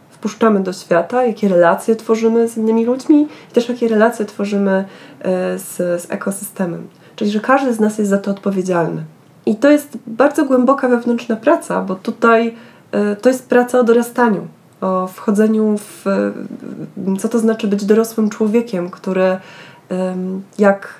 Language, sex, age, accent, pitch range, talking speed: Polish, female, 20-39, native, 185-230 Hz, 145 wpm